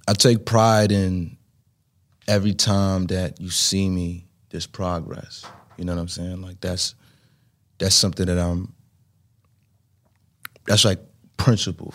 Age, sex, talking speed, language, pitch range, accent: 20-39, male, 130 wpm, English, 90-105 Hz, American